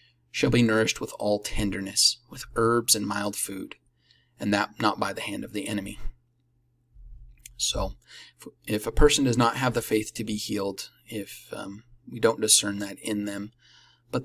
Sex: male